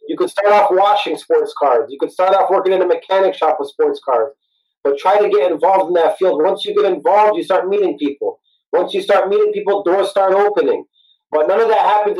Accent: American